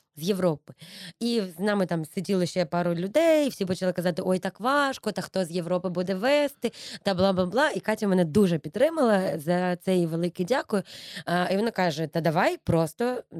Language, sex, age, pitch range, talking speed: Ukrainian, female, 20-39, 175-235 Hz, 180 wpm